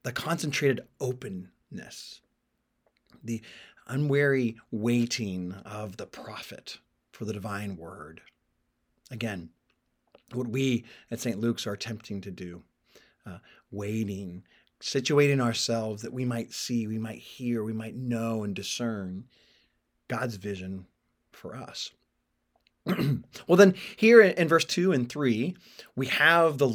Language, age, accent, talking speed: English, 30-49, American, 120 wpm